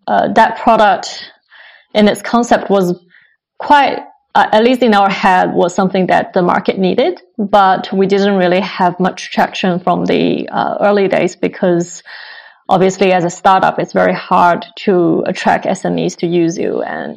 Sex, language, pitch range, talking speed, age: female, English, 180-215 Hz, 165 wpm, 20-39